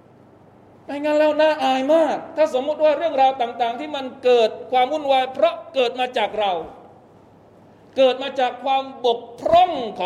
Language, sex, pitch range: Thai, male, 175-260 Hz